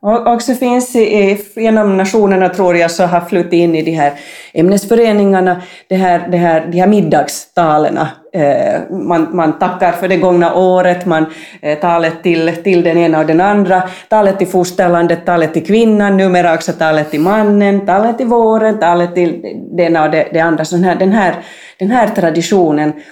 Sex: female